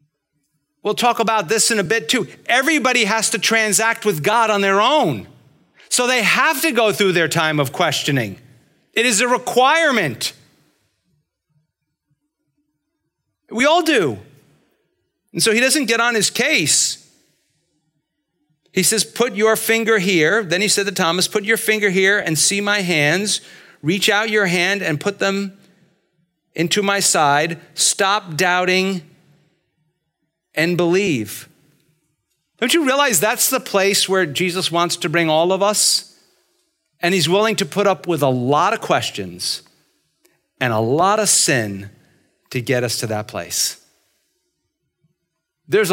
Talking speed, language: 145 wpm, English